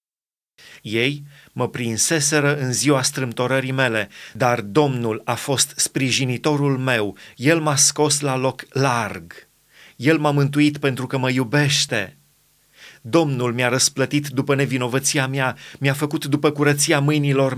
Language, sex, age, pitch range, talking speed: Romanian, male, 30-49, 130-150 Hz, 125 wpm